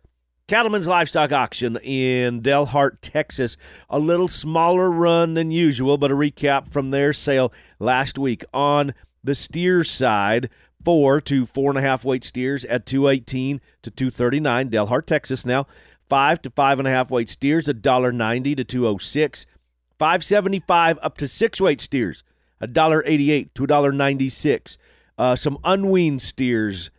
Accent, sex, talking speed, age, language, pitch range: American, male, 180 wpm, 40-59, English, 120-145 Hz